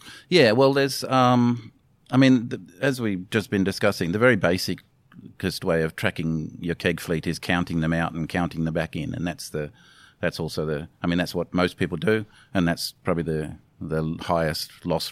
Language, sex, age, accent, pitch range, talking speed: English, male, 40-59, Australian, 80-95 Hz, 200 wpm